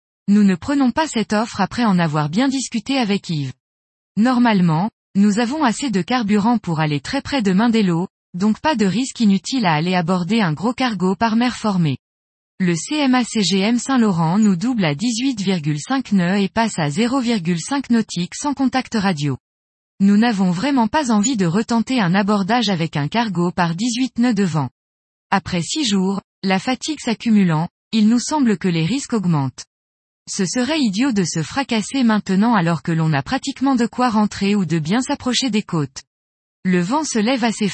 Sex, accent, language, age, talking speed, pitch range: female, French, French, 20-39, 175 wpm, 175-245 Hz